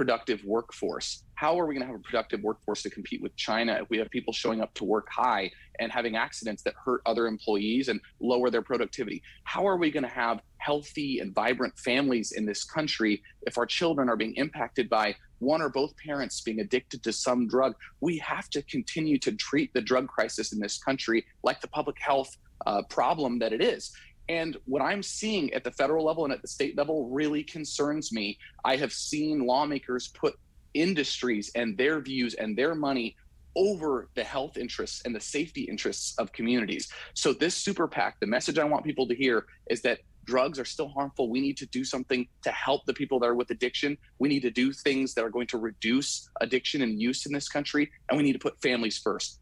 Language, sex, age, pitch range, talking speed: English, male, 30-49, 115-145 Hz, 215 wpm